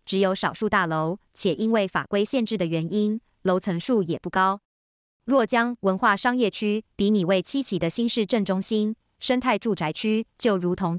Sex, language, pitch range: male, Chinese, 175-225 Hz